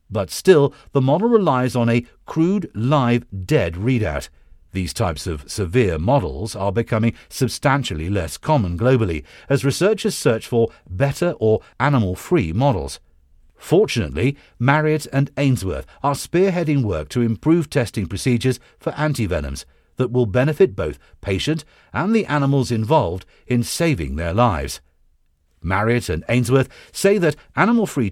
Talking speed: 130 wpm